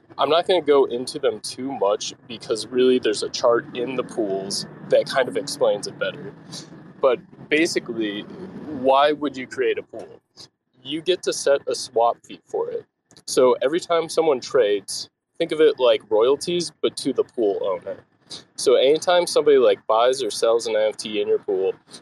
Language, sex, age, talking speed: English, male, 20-39, 185 wpm